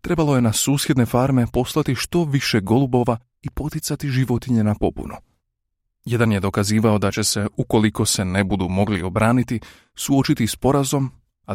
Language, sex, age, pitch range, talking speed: Croatian, male, 30-49, 100-130 Hz, 155 wpm